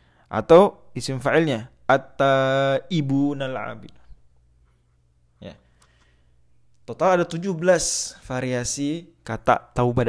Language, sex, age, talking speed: Indonesian, male, 20-39, 70 wpm